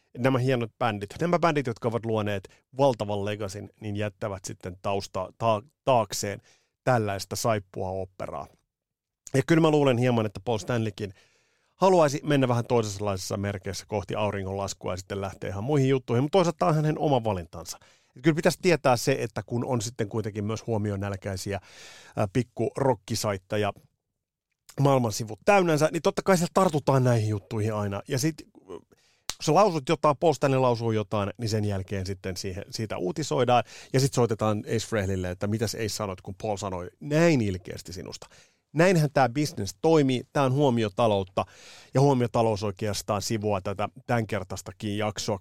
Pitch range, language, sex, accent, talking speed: 100-135 Hz, Finnish, male, native, 150 wpm